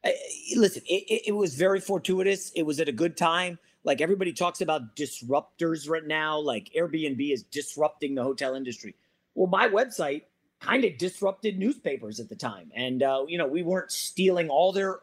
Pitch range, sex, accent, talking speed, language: 150-210 Hz, male, American, 180 wpm, English